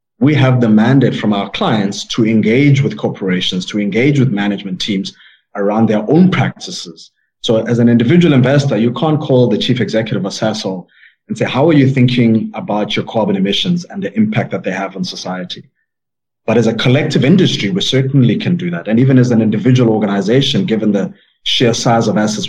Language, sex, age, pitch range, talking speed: English, male, 30-49, 105-135 Hz, 190 wpm